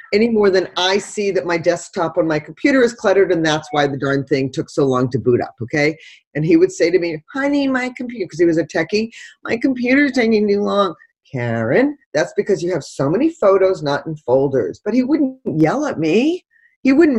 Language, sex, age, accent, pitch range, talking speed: English, female, 40-59, American, 155-250 Hz, 225 wpm